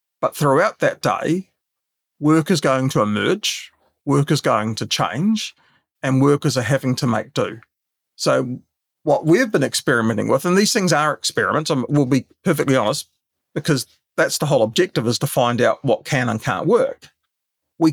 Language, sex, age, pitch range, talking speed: English, male, 40-59, 130-170 Hz, 175 wpm